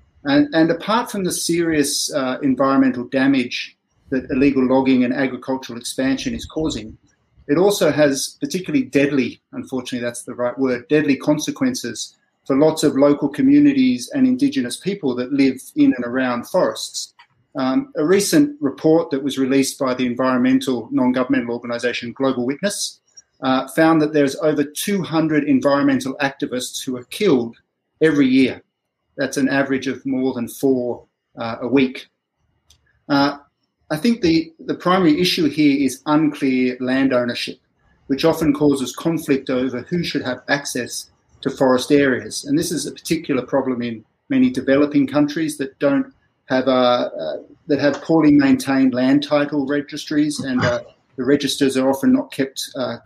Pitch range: 130-160 Hz